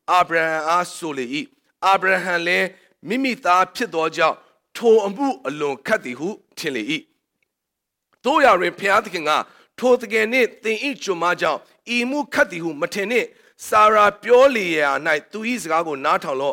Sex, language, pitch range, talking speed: male, English, 200-305 Hz, 130 wpm